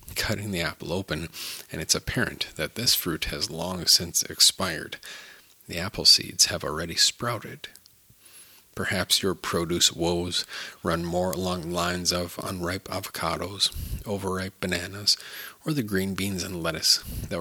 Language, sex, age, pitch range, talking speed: English, male, 40-59, 85-95 Hz, 140 wpm